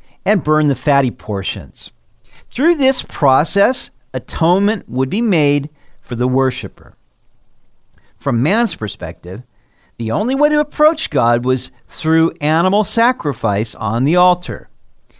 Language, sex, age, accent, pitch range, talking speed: English, male, 50-69, American, 120-185 Hz, 120 wpm